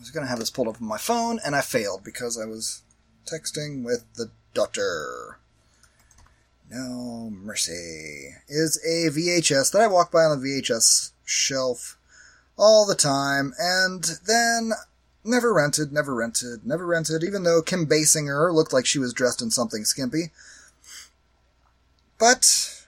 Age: 30-49